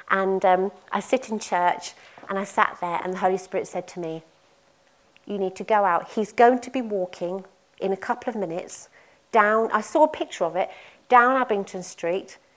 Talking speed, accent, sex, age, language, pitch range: 200 wpm, British, female, 40-59, English, 185-250 Hz